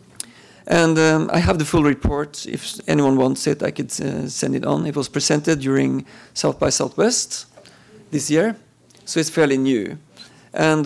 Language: French